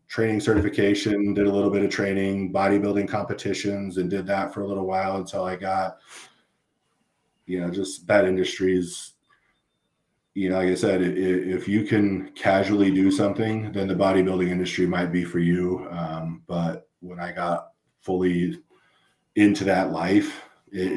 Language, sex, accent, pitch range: English, male, American, 90-100 Hz